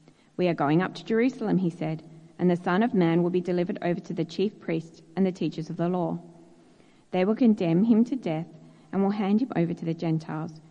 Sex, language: female, English